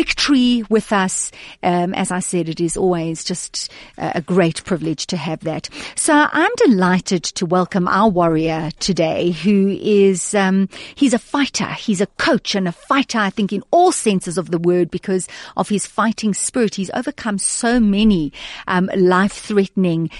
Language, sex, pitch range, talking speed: English, female, 180-250 Hz, 170 wpm